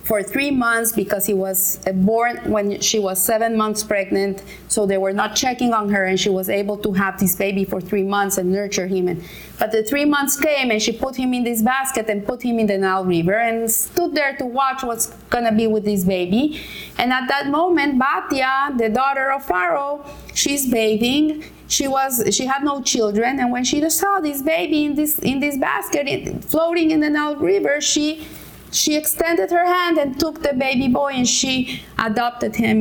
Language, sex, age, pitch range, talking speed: English, female, 30-49, 210-290 Hz, 210 wpm